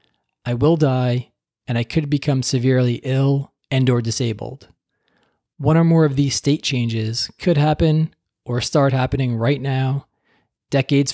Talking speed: 145 wpm